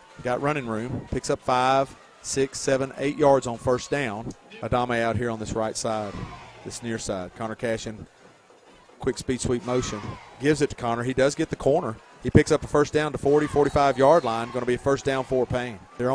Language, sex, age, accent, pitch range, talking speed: English, male, 40-59, American, 120-140 Hz, 215 wpm